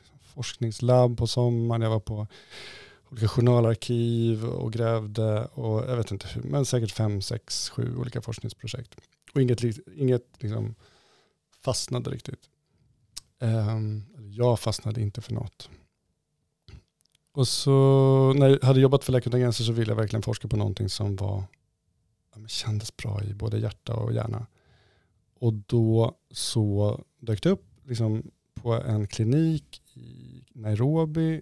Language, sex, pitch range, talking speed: Swedish, male, 110-130 Hz, 140 wpm